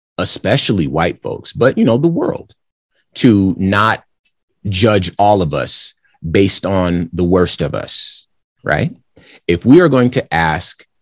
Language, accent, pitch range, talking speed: English, American, 80-105 Hz, 145 wpm